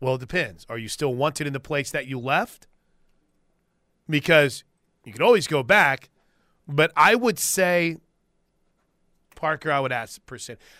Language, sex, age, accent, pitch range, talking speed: English, male, 30-49, American, 140-180 Hz, 155 wpm